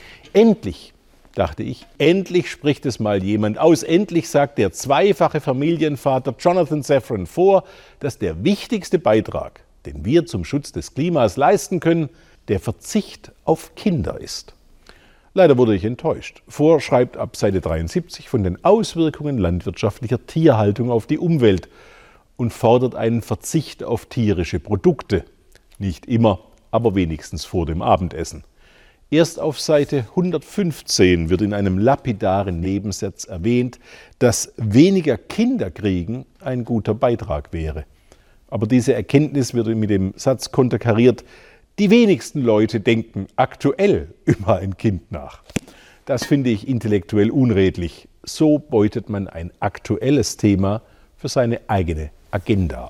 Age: 50-69